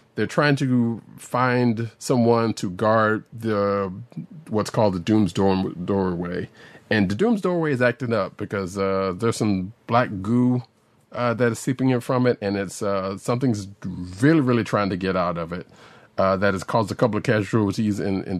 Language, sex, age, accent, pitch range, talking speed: English, male, 40-59, American, 95-120 Hz, 180 wpm